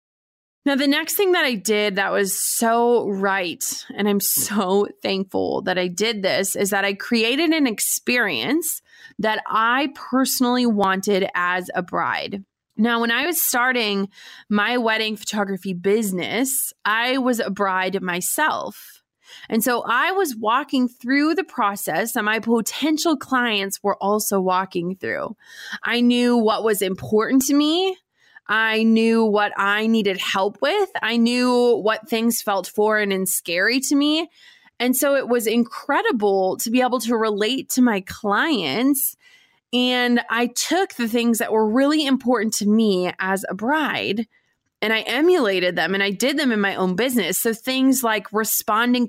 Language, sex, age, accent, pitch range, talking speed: English, female, 20-39, American, 205-260 Hz, 160 wpm